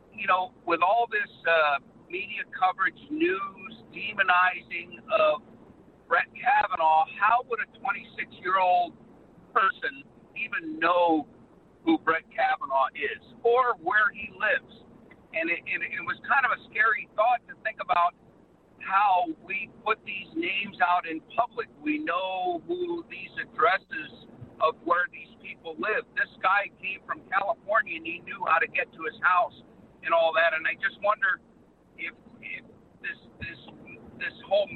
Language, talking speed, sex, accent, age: English, 145 wpm, male, American, 50-69